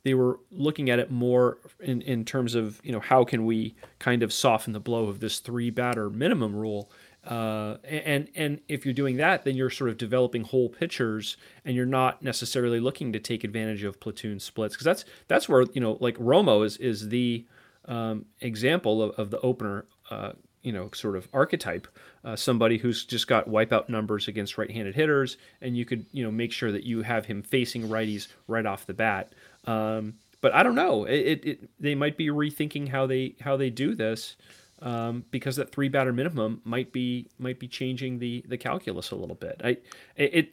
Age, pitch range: 30-49, 110-130 Hz